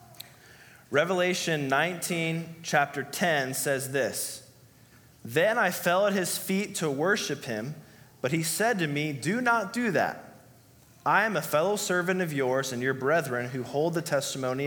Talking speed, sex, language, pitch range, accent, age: 155 wpm, male, English, 130-170 Hz, American, 20-39